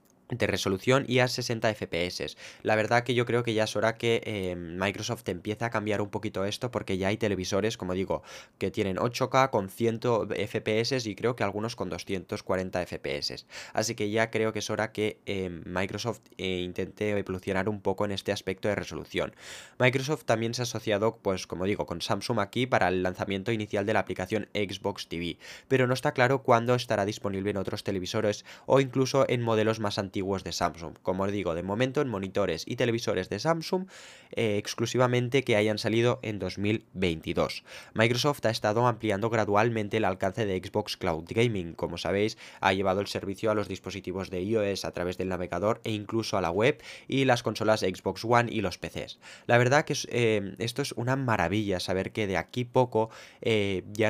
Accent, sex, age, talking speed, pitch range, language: Spanish, male, 20-39, 190 wpm, 95-115 Hz, Spanish